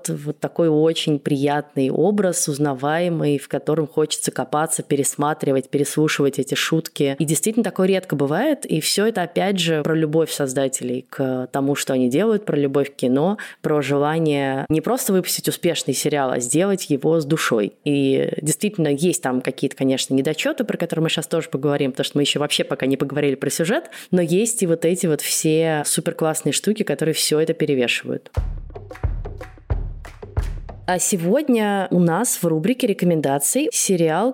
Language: Russian